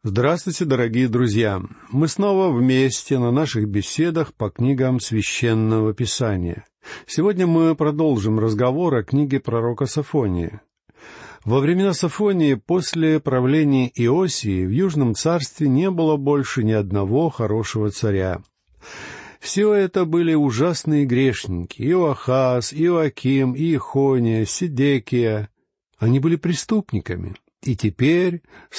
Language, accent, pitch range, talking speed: Russian, native, 115-160 Hz, 110 wpm